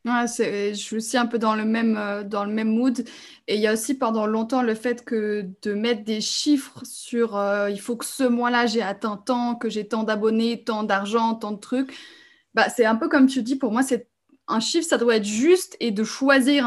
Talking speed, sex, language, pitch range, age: 240 wpm, female, French, 220-255 Hz, 20-39